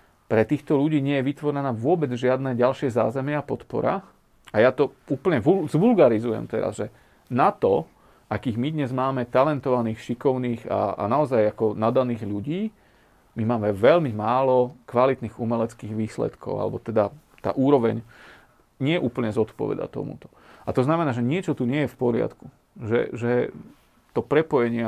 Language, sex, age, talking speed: Slovak, male, 40-59, 150 wpm